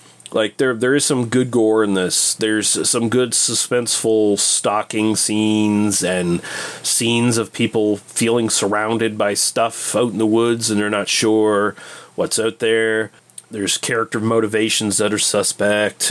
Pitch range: 105-120 Hz